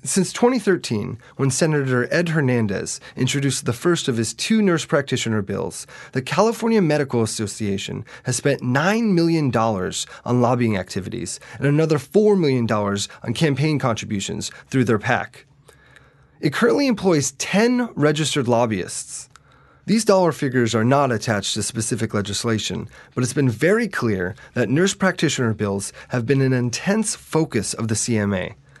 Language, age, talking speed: English, 20-39, 140 wpm